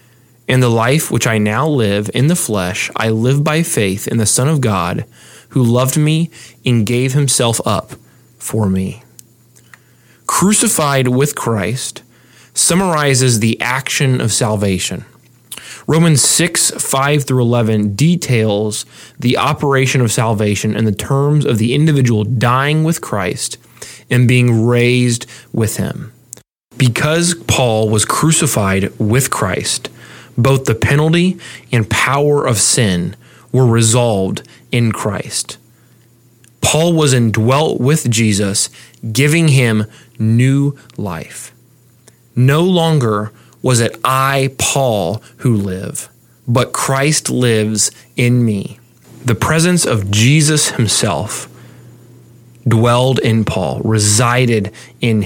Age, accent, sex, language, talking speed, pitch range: 20-39, American, male, English, 120 wpm, 115-135 Hz